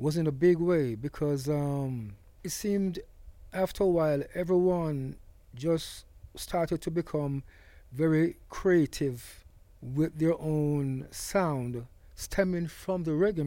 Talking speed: 120 wpm